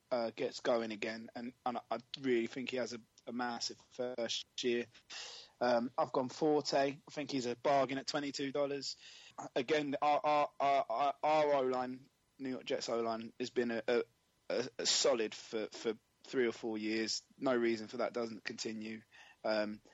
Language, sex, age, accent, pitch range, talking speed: English, male, 20-39, British, 115-140 Hz, 170 wpm